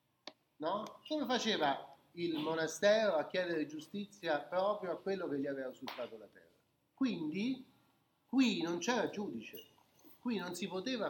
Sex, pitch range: male, 160-230 Hz